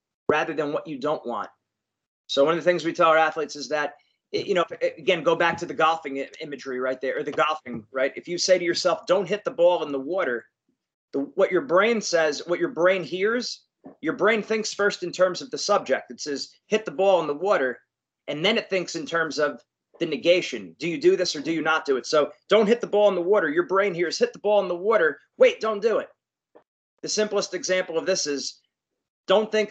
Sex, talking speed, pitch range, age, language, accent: male, 235 wpm, 160-205 Hz, 30-49, English, American